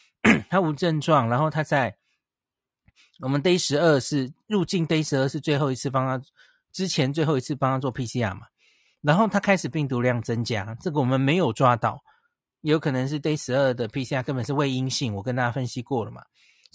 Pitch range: 125-160 Hz